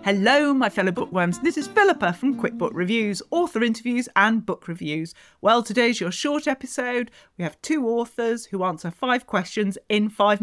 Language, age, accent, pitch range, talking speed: English, 40-59, British, 175-245 Hz, 175 wpm